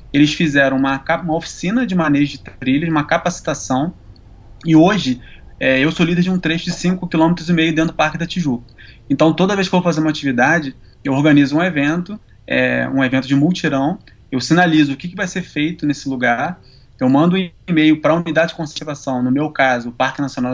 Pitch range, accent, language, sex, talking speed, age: 130-175 Hz, Brazilian, Portuguese, male, 205 wpm, 20-39